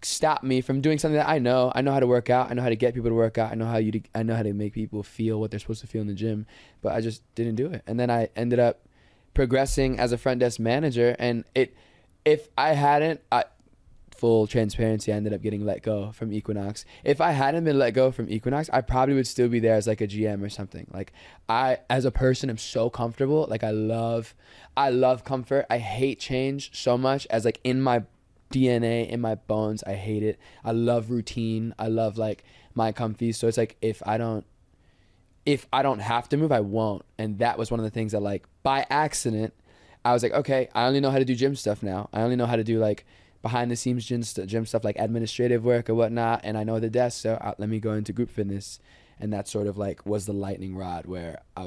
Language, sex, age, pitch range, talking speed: English, male, 20-39, 105-125 Hz, 245 wpm